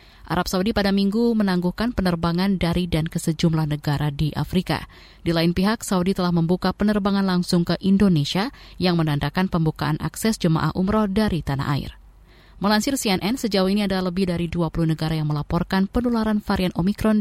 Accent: native